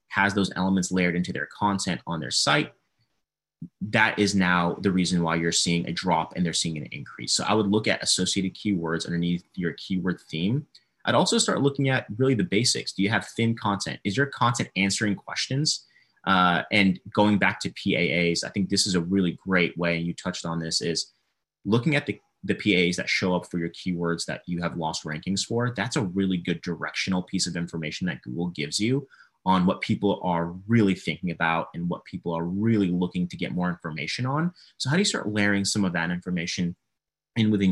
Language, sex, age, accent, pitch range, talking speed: English, male, 30-49, American, 85-100 Hz, 210 wpm